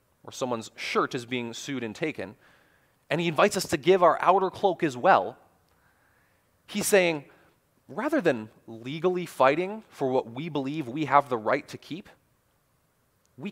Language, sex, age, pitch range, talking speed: English, male, 30-49, 130-175 Hz, 160 wpm